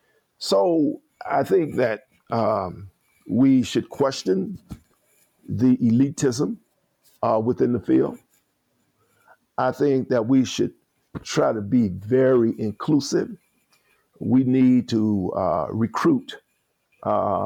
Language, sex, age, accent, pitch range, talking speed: English, male, 50-69, American, 110-140 Hz, 105 wpm